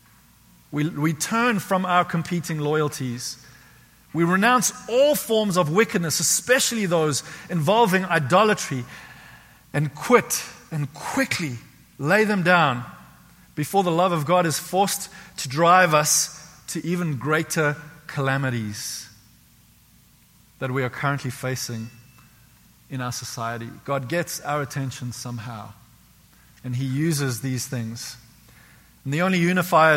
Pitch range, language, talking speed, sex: 130-175 Hz, English, 120 wpm, male